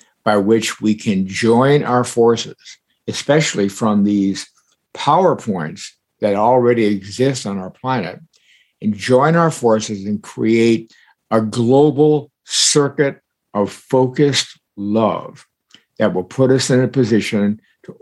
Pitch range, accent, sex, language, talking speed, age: 105-130 Hz, American, male, English, 125 wpm, 60-79